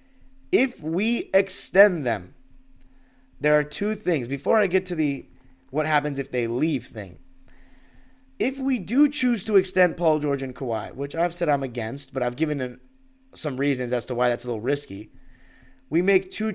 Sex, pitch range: male, 130-180 Hz